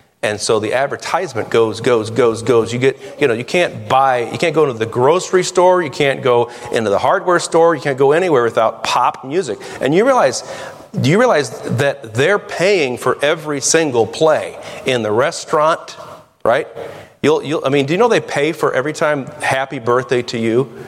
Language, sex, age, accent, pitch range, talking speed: English, male, 40-59, American, 115-145 Hz, 200 wpm